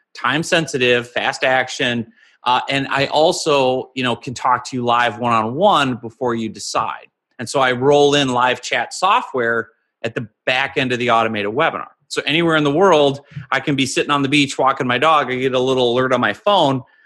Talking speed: 210 wpm